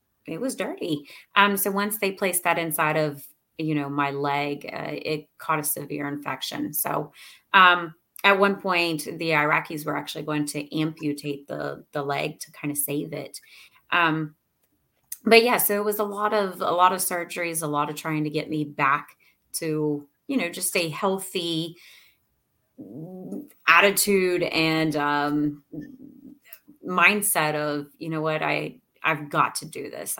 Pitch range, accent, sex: 145-180 Hz, American, female